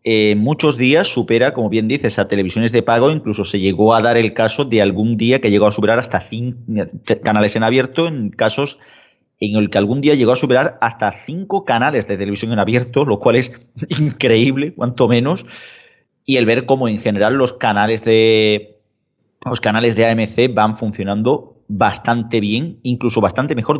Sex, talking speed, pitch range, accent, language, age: male, 185 wpm, 105-125 Hz, Spanish, Spanish, 30-49